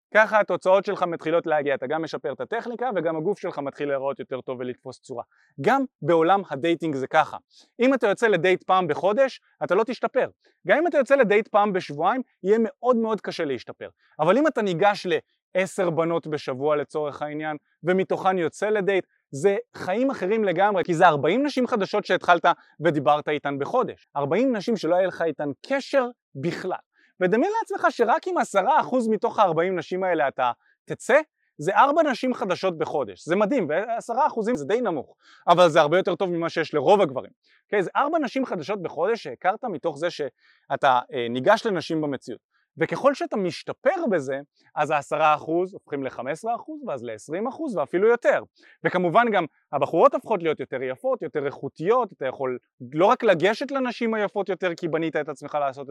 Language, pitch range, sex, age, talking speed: Hebrew, 155-235 Hz, male, 20-39, 175 wpm